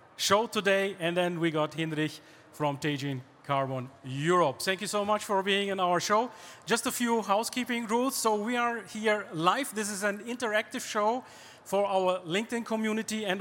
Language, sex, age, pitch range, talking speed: German, male, 40-59, 180-225 Hz, 180 wpm